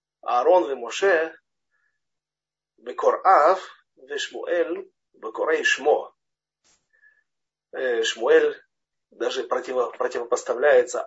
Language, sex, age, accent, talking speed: Russian, male, 40-59, native, 55 wpm